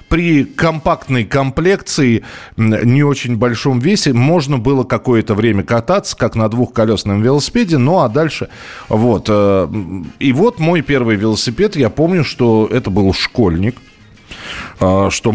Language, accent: Russian, native